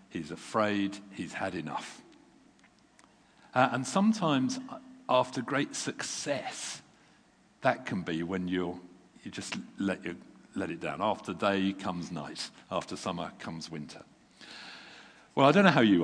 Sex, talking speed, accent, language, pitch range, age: male, 140 wpm, British, English, 95-120 Hz, 50-69